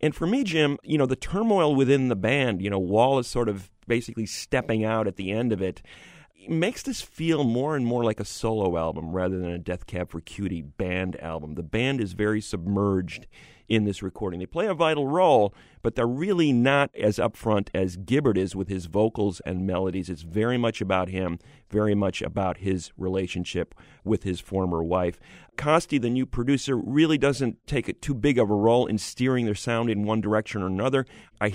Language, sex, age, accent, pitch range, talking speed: English, male, 40-59, American, 95-130 Hz, 205 wpm